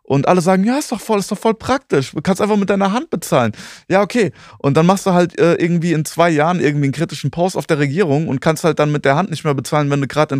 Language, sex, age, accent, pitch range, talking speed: German, male, 20-39, German, 130-175 Hz, 295 wpm